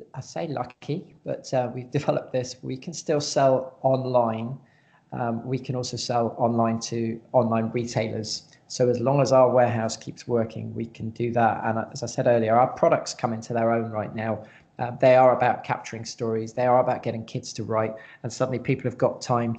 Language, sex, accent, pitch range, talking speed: English, male, British, 115-135 Hz, 200 wpm